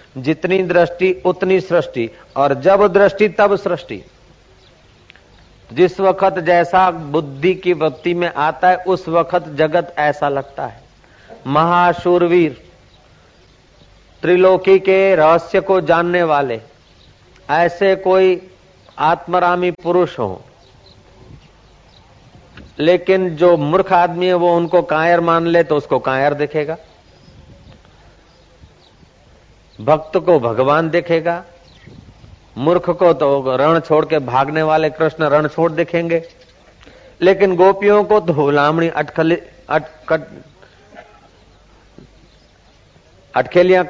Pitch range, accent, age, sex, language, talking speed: 150-185 Hz, native, 50-69, male, Hindi, 100 wpm